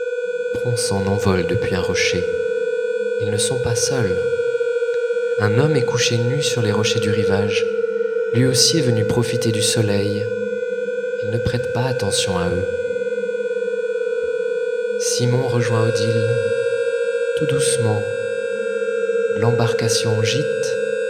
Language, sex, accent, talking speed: French, male, French, 115 wpm